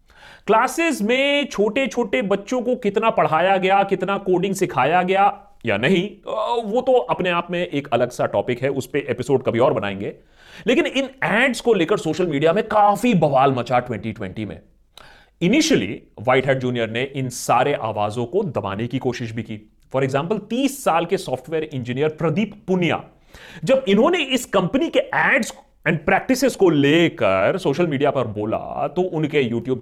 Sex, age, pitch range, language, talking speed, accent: male, 30-49, 130-205 Hz, Hindi, 165 wpm, native